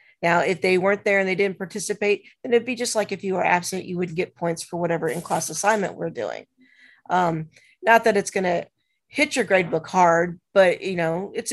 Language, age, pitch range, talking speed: English, 40-59, 170-195 Hz, 215 wpm